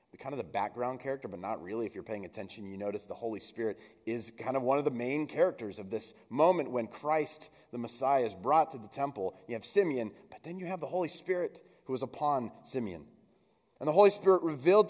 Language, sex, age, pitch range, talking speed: English, male, 30-49, 115-160 Hz, 225 wpm